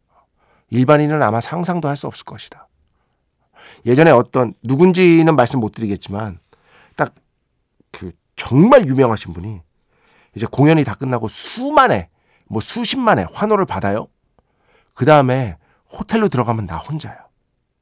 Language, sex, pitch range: Korean, male, 105-155 Hz